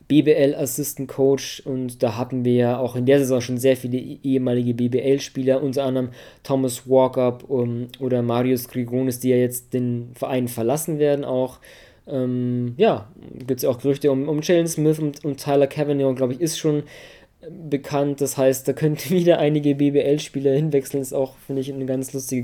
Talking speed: 180 wpm